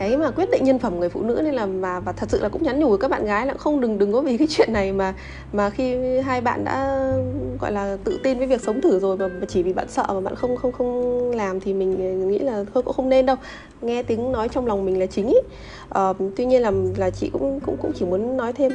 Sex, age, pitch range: female, 20-39, 180-245 Hz